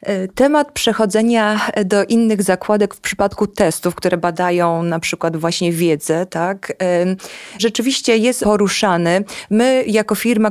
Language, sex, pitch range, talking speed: Polish, female, 190-220 Hz, 120 wpm